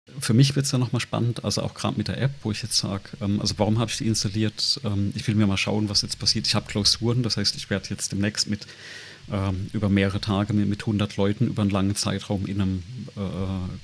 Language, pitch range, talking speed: German, 100-115 Hz, 245 wpm